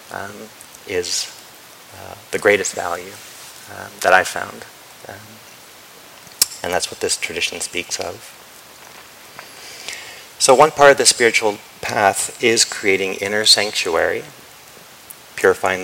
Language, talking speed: English, 115 wpm